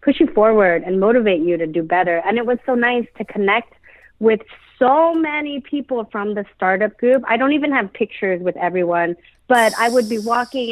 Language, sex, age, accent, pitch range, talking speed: English, female, 30-49, American, 190-240 Hz, 200 wpm